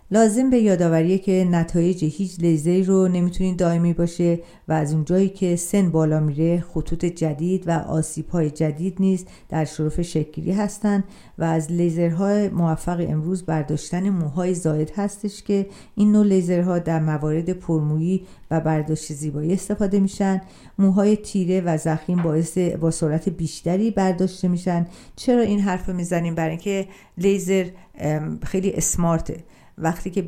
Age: 50-69